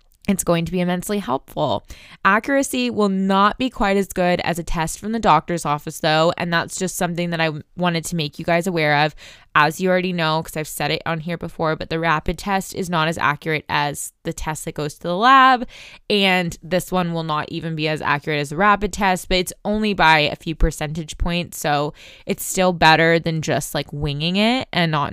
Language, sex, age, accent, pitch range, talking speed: English, female, 20-39, American, 160-200 Hz, 220 wpm